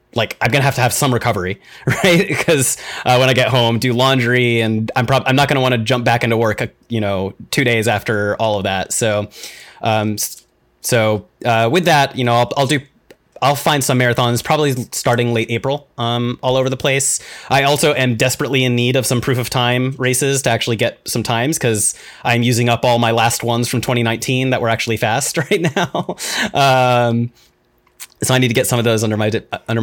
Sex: male